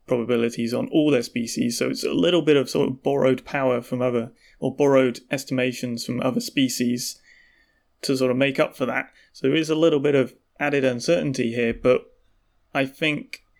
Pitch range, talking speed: 125-160 Hz, 190 wpm